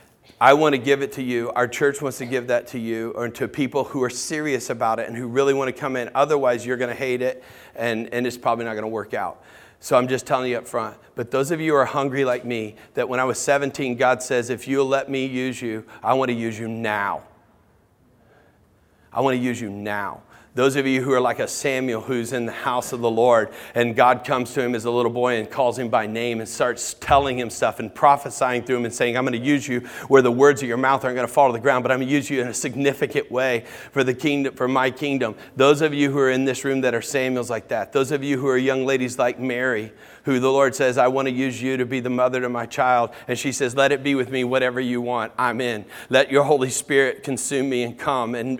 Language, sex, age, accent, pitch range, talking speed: English, male, 40-59, American, 120-135 Hz, 270 wpm